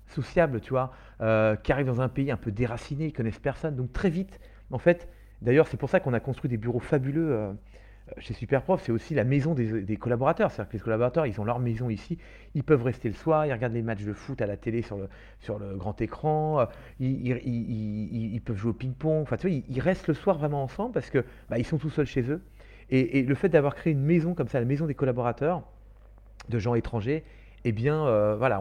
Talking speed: 250 wpm